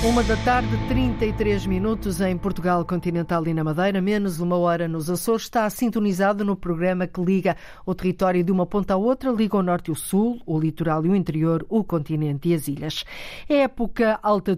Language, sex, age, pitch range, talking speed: Portuguese, female, 50-69, 170-205 Hz, 195 wpm